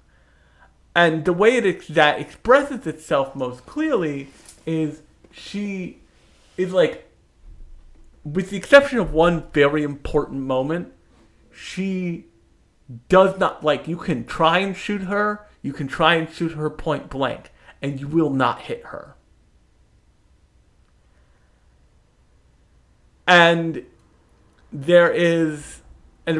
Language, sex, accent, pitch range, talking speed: English, male, American, 125-165 Hz, 110 wpm